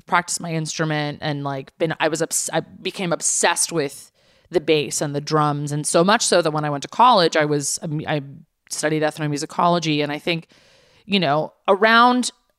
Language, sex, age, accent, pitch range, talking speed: English, female, 20-39, American, 150-185 Hz, 180 wpm